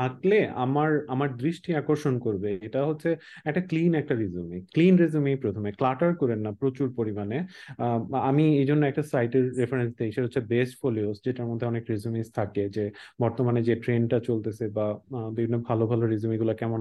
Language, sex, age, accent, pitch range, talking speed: English, male, 30-49, Indian, 115-150 Hz, 105 wpm